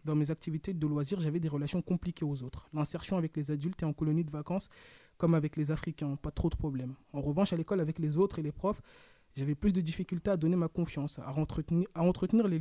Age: 20-39